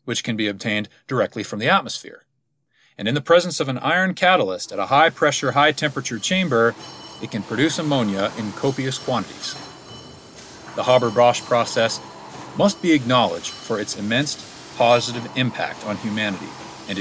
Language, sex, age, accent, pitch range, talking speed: English, male, 40-59, American, 105-145 Hz, 155 wpm